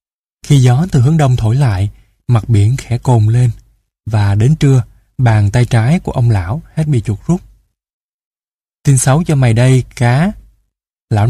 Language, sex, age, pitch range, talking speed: Vietnamese, male, 20-39, 105-130 Hz, 170 wpm